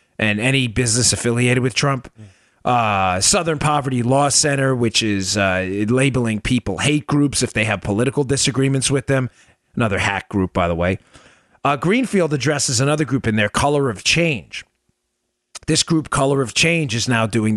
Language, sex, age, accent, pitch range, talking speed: English, male, 40-59, American, 120-170 Hz, 165 wpm